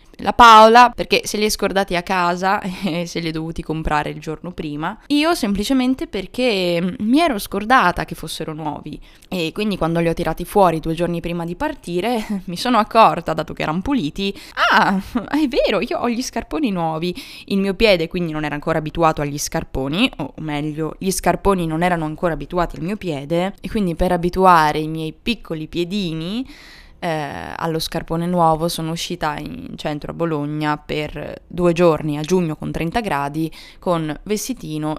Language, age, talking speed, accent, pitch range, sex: Italian, 20-39, 175 wpm, native, 155-205 Hz, female